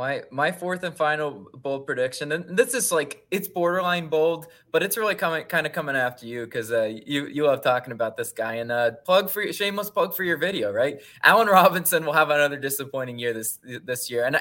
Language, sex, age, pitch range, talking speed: English, male, 20-39, 140-190 Hz, 220 wpm